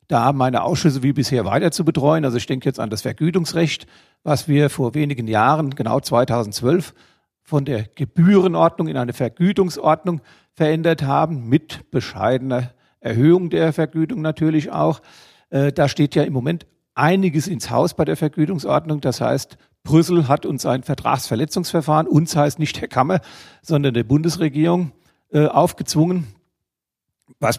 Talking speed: 140 wpm